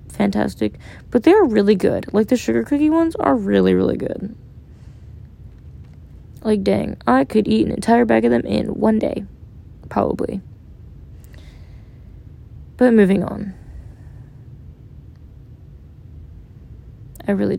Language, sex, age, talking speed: English, female, 20-39, 115 wpm